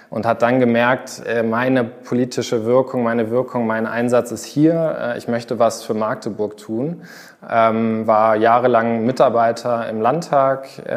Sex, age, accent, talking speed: male, 20-39, German, 130 wpm